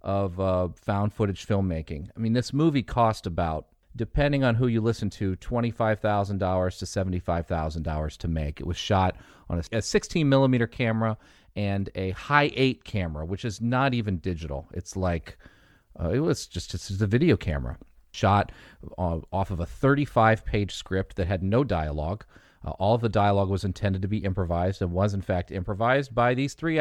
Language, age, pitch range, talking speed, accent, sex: English, 40-59, 90-115 Hz, 170 wpm, American, male